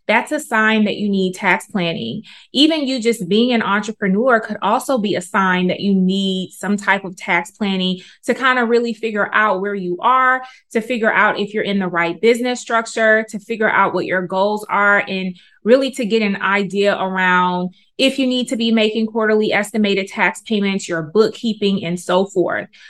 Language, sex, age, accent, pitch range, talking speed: English, female, 20-39, American, 185-230 Hz, 195 wpm